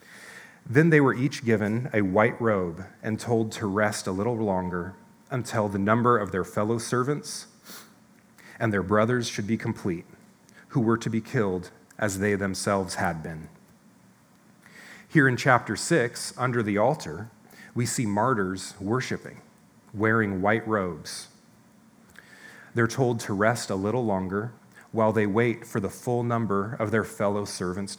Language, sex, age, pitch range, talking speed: English, male, 30-49, 100-125 Hz, 150 wpm